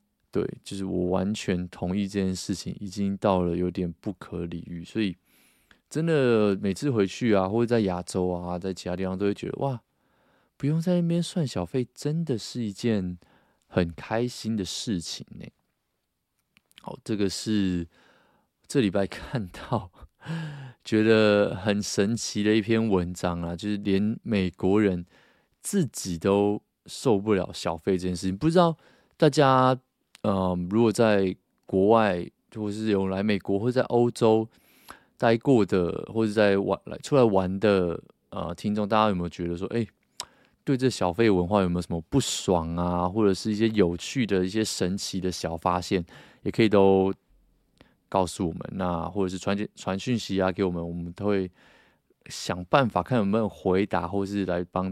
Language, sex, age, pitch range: Chinese, male, 20-39, 90-110 Hz